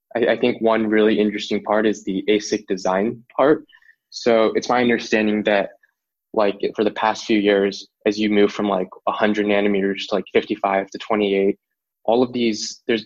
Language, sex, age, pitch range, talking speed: English, male, 20-39, 100-115 Hz, 175 wpm